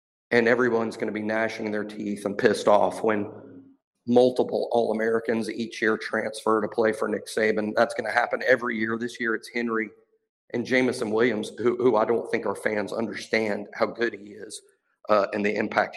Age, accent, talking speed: 50-69, American, 190 wpm